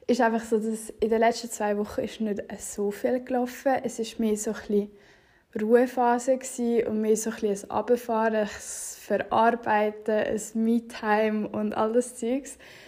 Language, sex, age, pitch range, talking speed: German, female, 10-29, 215-245 Hz, 150 wpm